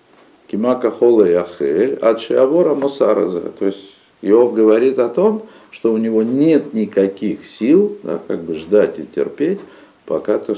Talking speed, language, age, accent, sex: 140 wpm, Russian, 50-69, native, male